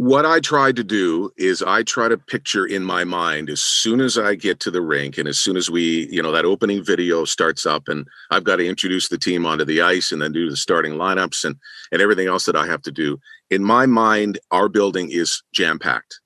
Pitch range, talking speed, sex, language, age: 85-115 Hz, 240 wpm, male, English, 40-59